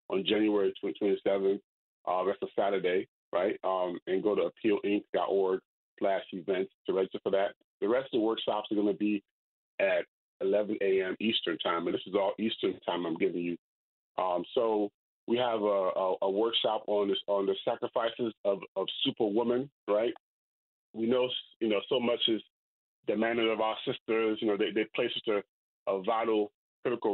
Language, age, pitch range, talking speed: English, 30-49, 100-115 Hz, 175 wpm